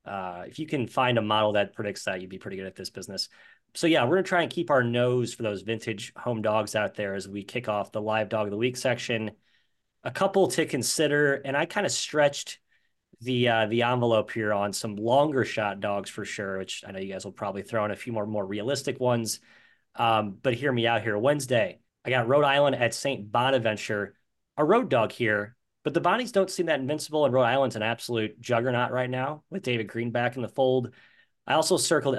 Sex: male